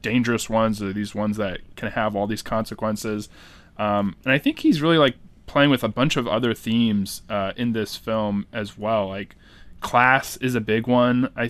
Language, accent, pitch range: English, American, 105-135 Hz